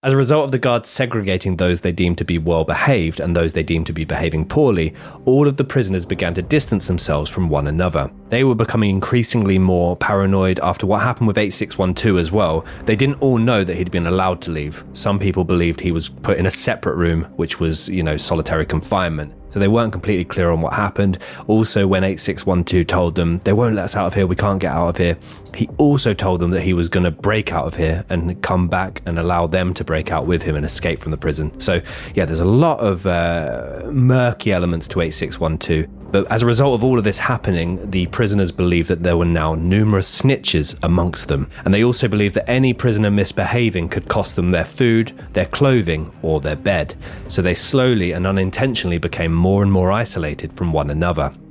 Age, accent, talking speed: 20-39, British, 220 wpm